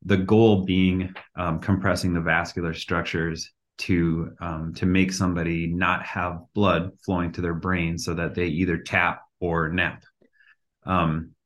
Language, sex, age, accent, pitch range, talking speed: English, male, 30-49, American, 85-95 Hz, 145 wpm